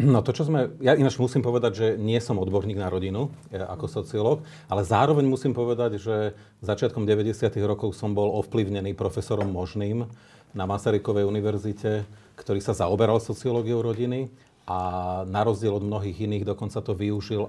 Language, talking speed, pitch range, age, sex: Slovak, 160 wpm, 100-115 Hz, 40-59, male